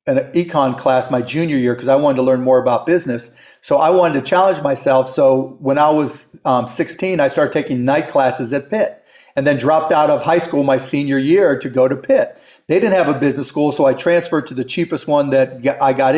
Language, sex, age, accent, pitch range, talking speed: English, male, 40-59, American, 135-175 Hz, 235 wpm